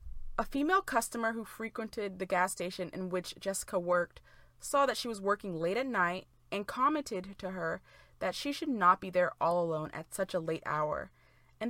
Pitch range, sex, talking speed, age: 170-235 Hz, female, 195 wpm, 20-39